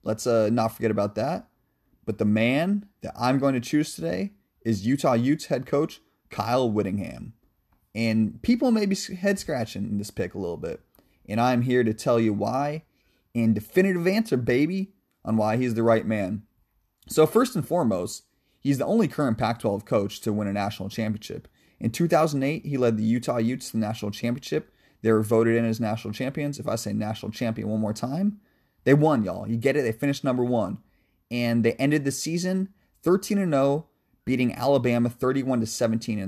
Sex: male